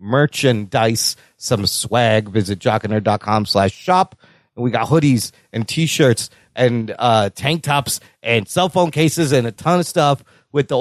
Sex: male